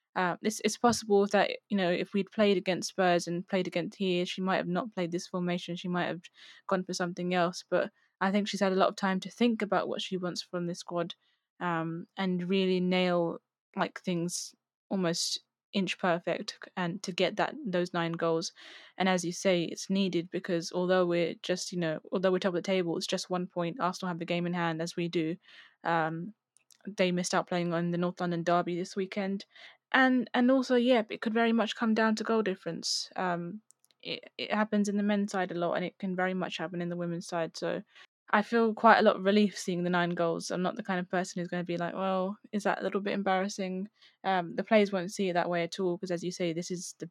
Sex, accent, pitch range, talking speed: female, British, 175-200 Hz, 240 wpm